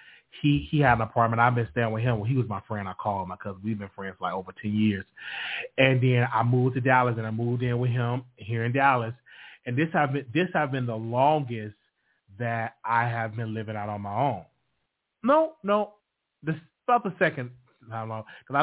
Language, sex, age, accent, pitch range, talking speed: English, male, 30-49, American, 110-155 Hz, 225 wpm